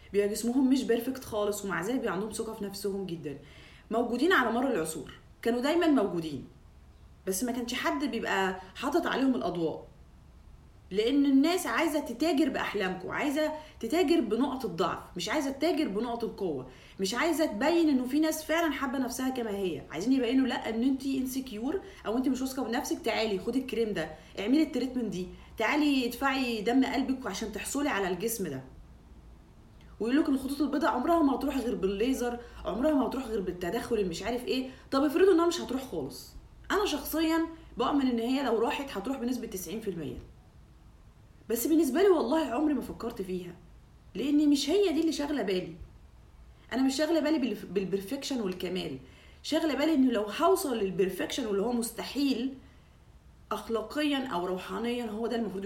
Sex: female